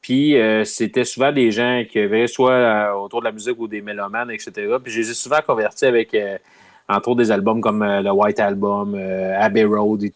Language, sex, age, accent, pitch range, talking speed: French, male, 30-49, Canadian, 110-140 Hz, 230 wpm